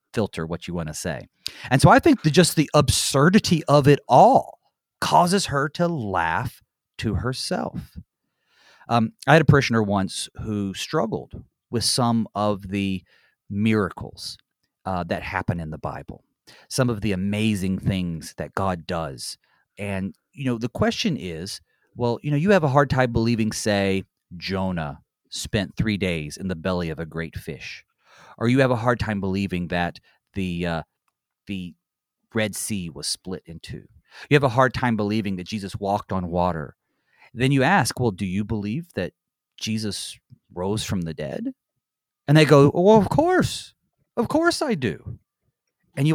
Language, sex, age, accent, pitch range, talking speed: English, male, 30-49, American, 95-145 Hz, 170 wpm